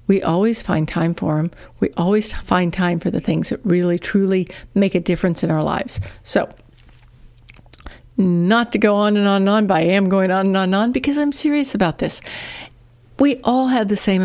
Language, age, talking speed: English, 50-69, 210 wpm